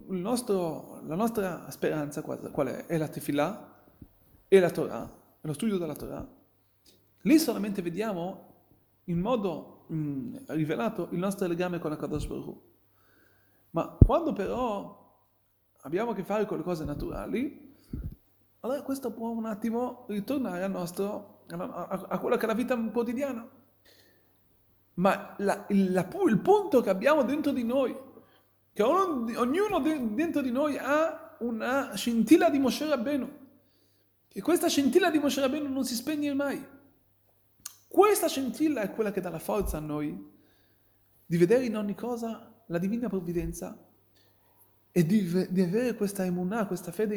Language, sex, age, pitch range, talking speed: Italian, male, 40-59, 165-250 Hz, 150 wpm